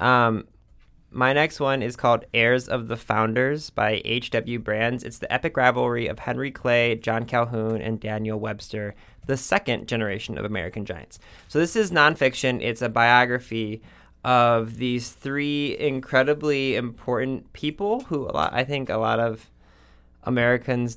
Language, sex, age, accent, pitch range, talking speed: English, male, 20-39, American, 110-125 Hz, 150 wpm